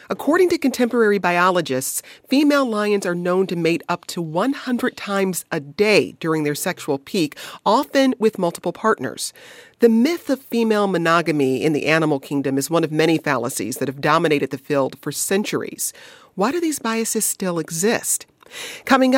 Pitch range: 155-240 Hz